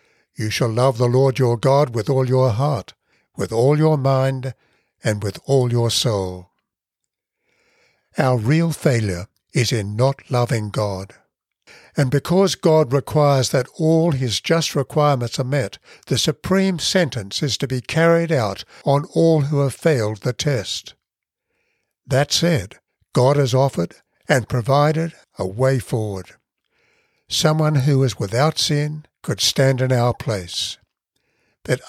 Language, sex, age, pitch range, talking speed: English, male, 60-79, 120-150 Hz, 140 wpm